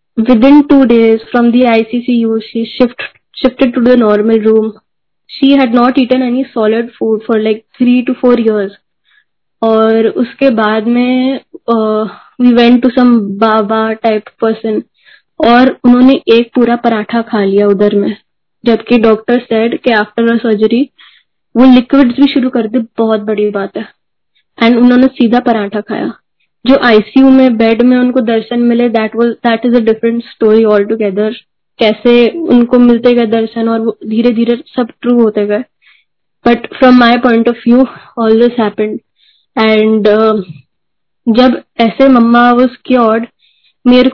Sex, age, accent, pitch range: female, 10-29, native, 220-250 Hz